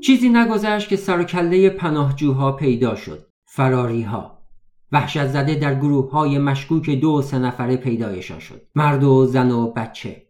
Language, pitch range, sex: Persian, 125-155 Hz, male